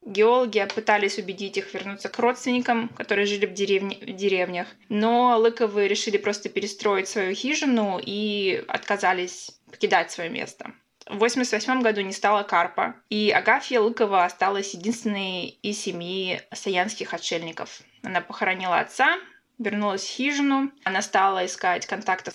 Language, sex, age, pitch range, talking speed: Russian, female, 20-39, 190-230 Hz, 135 wpm